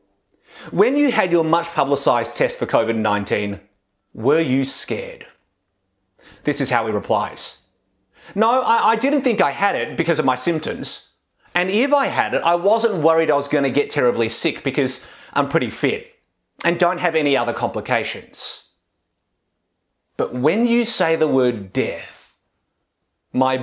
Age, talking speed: 30-49, 155 wpm